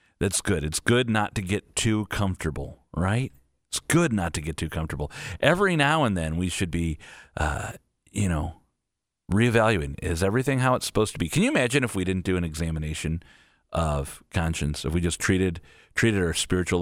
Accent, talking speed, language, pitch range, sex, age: American, 190 wpm, English, 75-100 Hz, male, 40-59